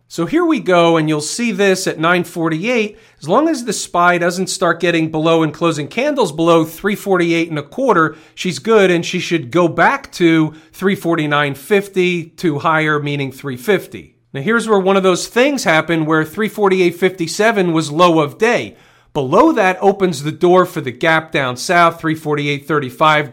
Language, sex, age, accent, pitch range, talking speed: English, male, 40-59, American, 155-185 Hz, 165 wpm